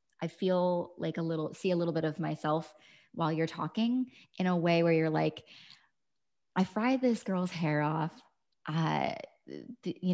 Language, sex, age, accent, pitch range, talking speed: English, female, 20-39, American, 160-190 Hz, 165 wpm